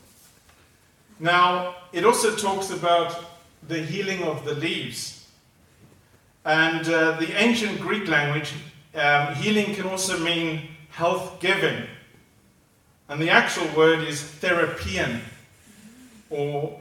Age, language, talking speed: 40-59, English, 105 wpm